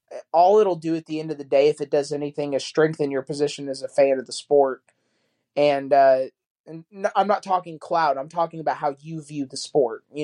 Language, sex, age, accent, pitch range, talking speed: English, male, 20-39, American, 140-165 Hz, 235 wpm